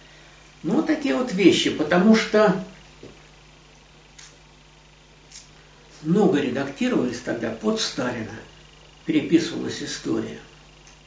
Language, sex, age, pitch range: Russian, male, 60-79, 165-250 Hz